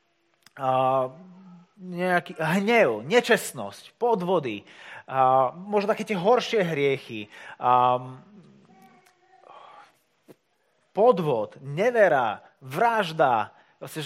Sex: male